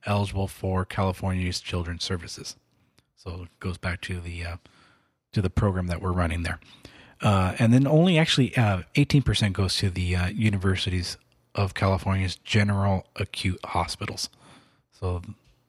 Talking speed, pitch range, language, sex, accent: 140 wpm, 95-120 Hz, English, male, American